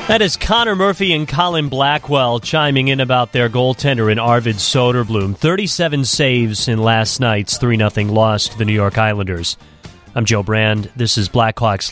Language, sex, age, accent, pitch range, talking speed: English, male, 30-49, American, 105-135 Hz, 170 wpm